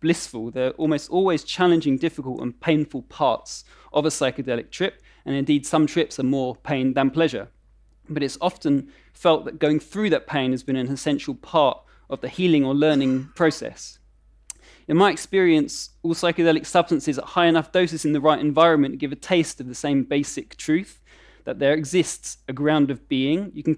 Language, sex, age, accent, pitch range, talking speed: English, male, 20-39, British, 140-165 Hz, 185 wpm